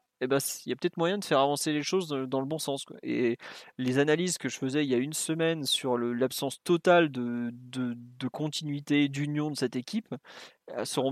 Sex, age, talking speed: male, 30-49, 215 wpm